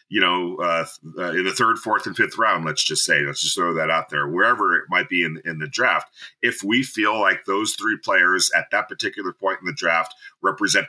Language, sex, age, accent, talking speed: English, male, 40-59, American, 235 wpm